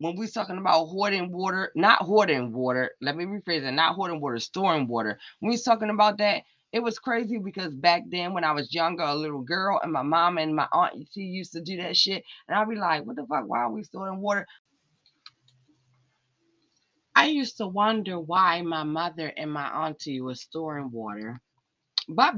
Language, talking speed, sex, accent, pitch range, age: English, 200 wpm, female, American, 140-205 Hz, 20-39